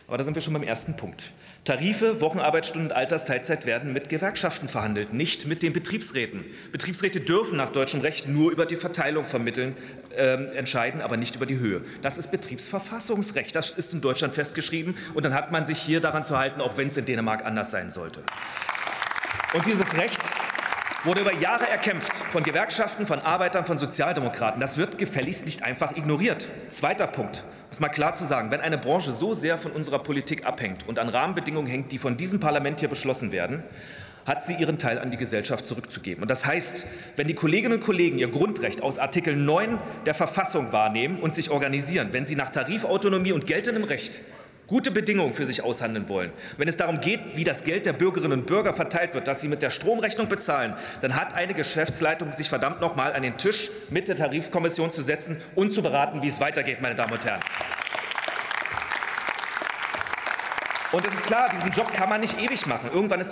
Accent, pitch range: German, 135-185 Hz